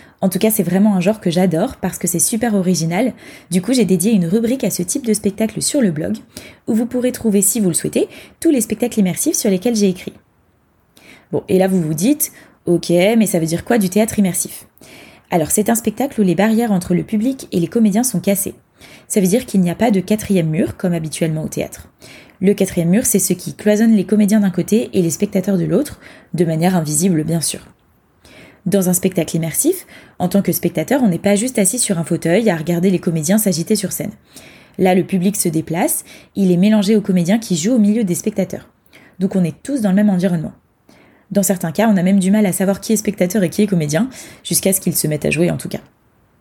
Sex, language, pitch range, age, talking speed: female, French, 180-215 Hz, 20-39, 235 wpm